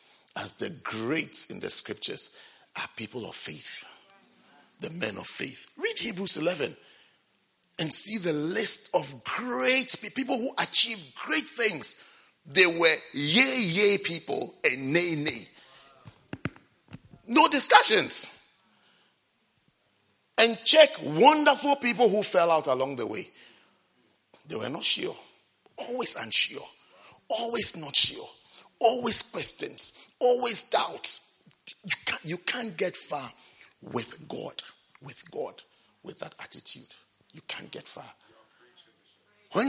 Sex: male